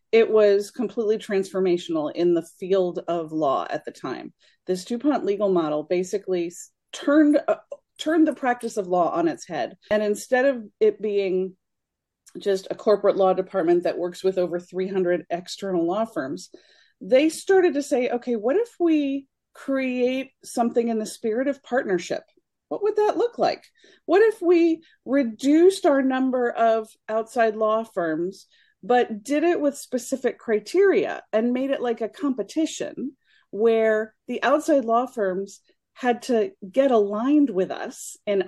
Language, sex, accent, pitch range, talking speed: English, female, American, 190-275 Hz, 155 wpm